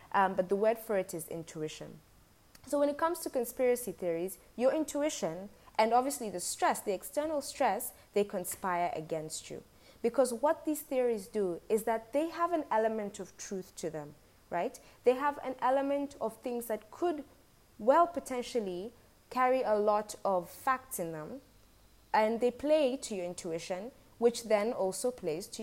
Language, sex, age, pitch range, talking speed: English, female, 20-39, 175-255 Hz, 170 wpm